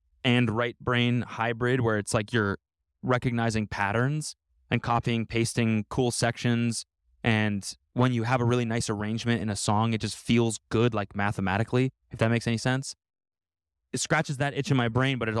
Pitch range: 90-120 Hz